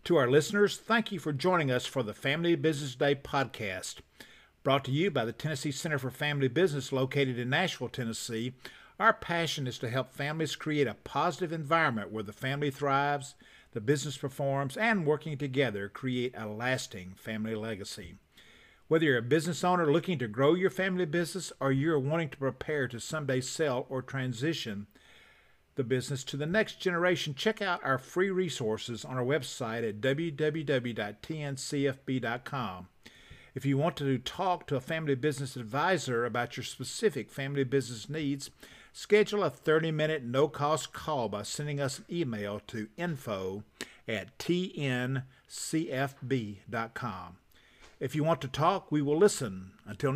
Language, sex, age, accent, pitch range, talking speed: English, male, 50-69, American, 120-155 Hz, 155 wpm